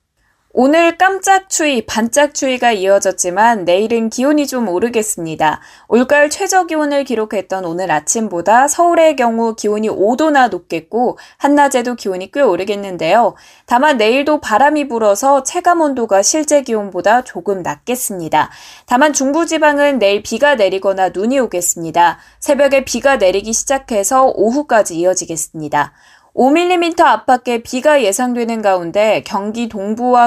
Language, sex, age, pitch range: Korean, female, 20-39, 190-285 Hz